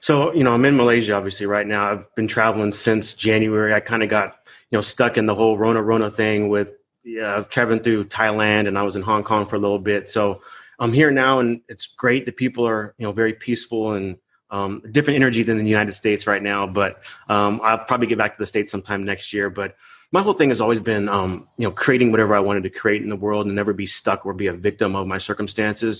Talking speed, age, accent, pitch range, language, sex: 250 wpm, 30-49, American, 100-115 Hz, English, male